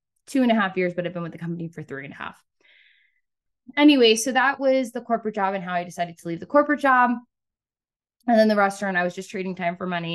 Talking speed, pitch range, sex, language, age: 255 wpm, 175-225 Hz, female, English, 20-39